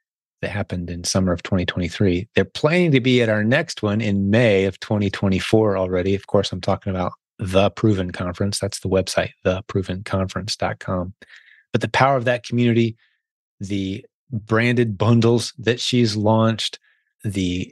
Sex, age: male, 30-49